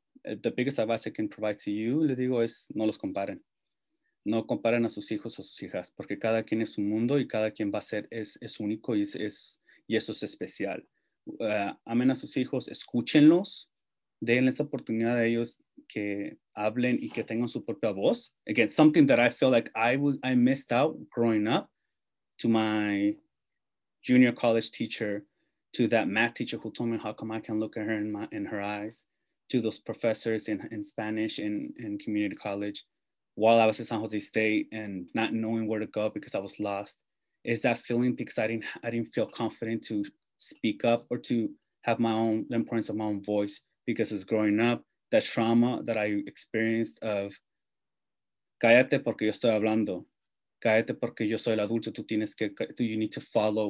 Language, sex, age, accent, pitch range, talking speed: English, male, 30-49, Mexican, 105-120 Hz, 200 wpm